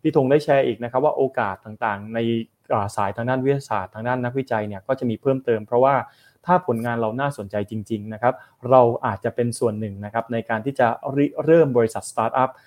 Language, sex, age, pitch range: Thai, male, 20-39, 115-135 Hz